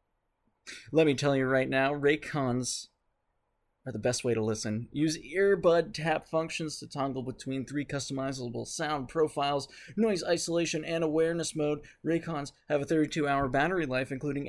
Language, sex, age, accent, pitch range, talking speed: English, male, 20-39, American, 140-165 Hz, 150 wpm